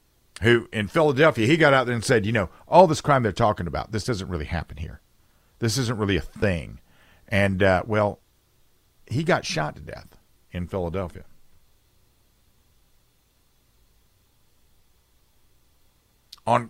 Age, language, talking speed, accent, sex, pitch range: 50-69, English, 135 wpm, American, male, 90-120 Hz